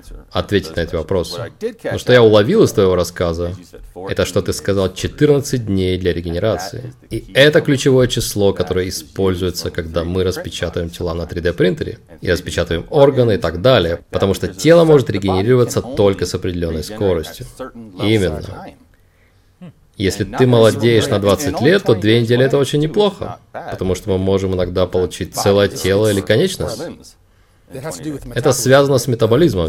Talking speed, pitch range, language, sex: 150 wpm, 90-125 Hz, Russian, male